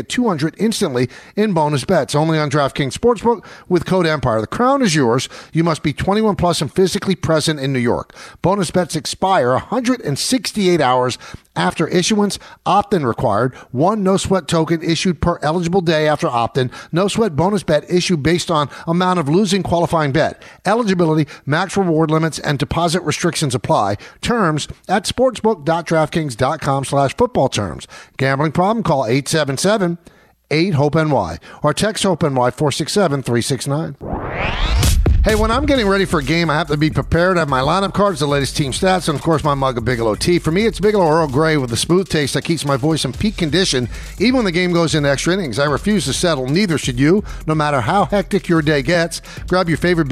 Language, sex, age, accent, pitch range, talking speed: English, male, 50-69, American, 145-190 Hz, 180 wpm